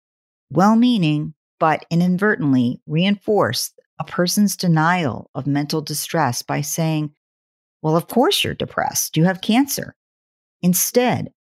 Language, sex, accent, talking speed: English, female, American, 110 wpm